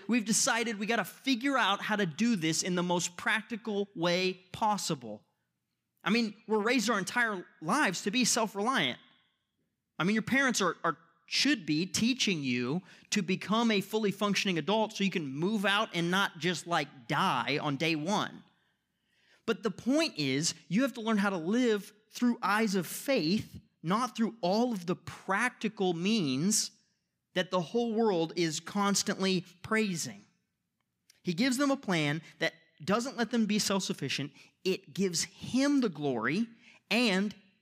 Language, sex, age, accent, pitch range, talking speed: English, male, 30-49, American, 150-220 Hz, 165 wpm